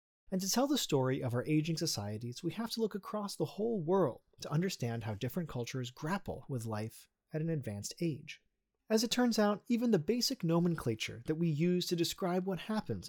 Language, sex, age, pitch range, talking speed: English, male, 30-49, 120-190 Hz, 200 wpm